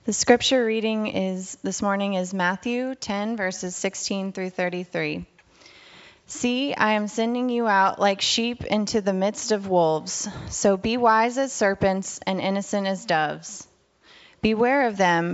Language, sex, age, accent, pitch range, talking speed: English, female, 20-39, American, 185-220 Hz, 155 wpm